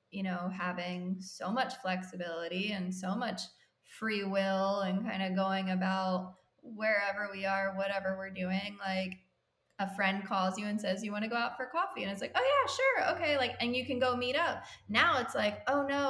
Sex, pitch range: female, 190-230 Hz